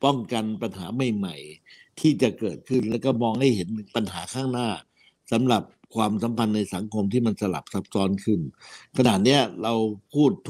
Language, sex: Thai, male